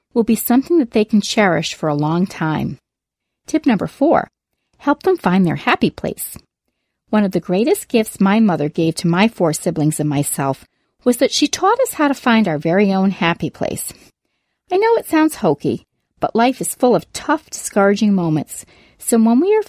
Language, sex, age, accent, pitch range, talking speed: English, female, 40-59, American, 180-255 Hz, 195 wpm